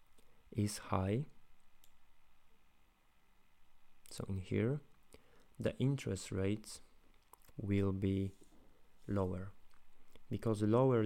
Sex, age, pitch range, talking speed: male, 20-39, 95-110 Hz, 70 wpm